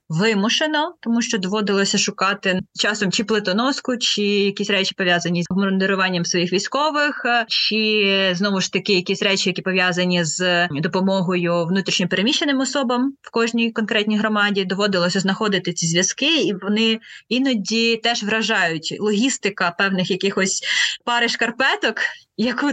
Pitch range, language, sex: 200-235 Hz, Ukrainian, female